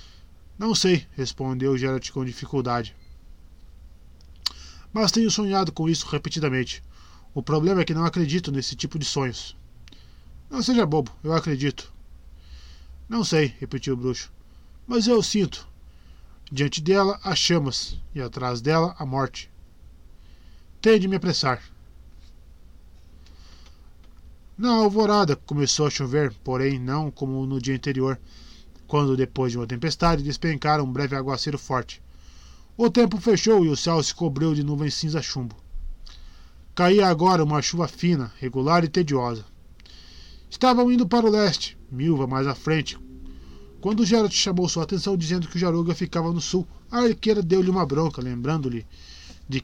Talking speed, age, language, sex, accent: 150 wpm, 20-39, Portuguese, male, Brazilian